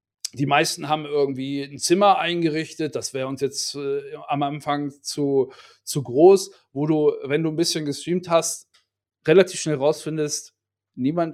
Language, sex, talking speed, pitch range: German, male, 155 wpm, 150-195 Hz